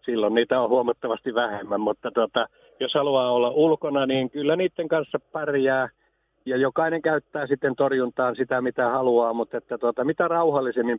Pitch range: 120-140 Hz